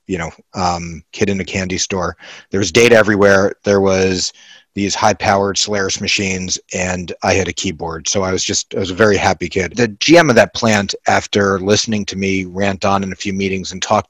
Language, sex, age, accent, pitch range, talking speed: English, male, 30-49, American, 95-110 Hz, 215 wpm